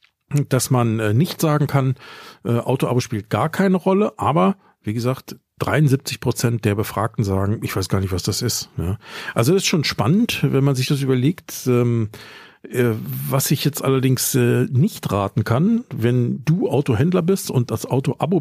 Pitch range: 115-150 Hz